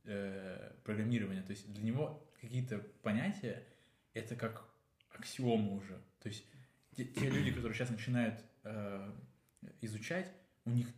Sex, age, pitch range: male, 20-39, 105-125 Hz